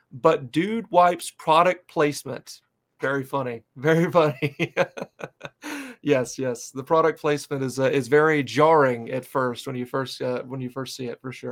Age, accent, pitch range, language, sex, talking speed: 30-49, American, 130-160 Hz, English, male, 165 wpm